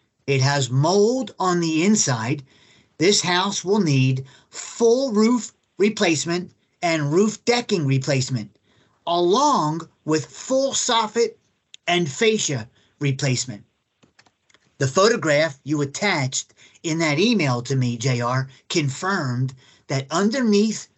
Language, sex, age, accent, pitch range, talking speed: English, male, 30-49, American, 130-185 Hz, 105 wpm